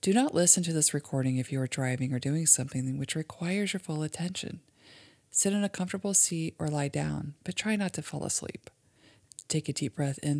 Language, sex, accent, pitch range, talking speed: English, female, American, 135-170 Hz, 215 wpm